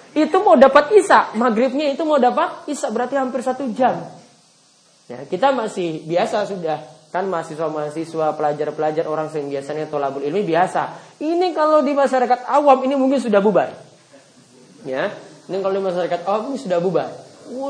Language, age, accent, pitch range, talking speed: Indonesian, 20-39, native, 165-265 Hz, 155 wpm